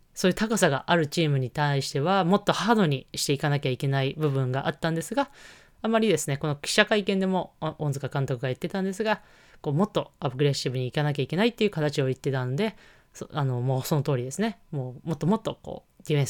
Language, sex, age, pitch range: Japanese, female, 20-39, 135-175 Hz